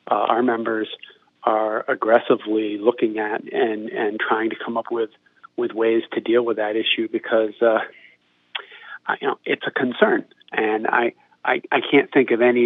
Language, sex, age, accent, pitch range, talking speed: English, male, 40-59, American, 110-140 Hz, 170 wpm